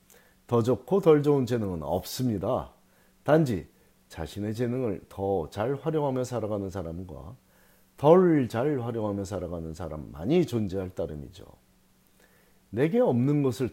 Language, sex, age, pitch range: Korean, male, 40-59, 100-145 Hz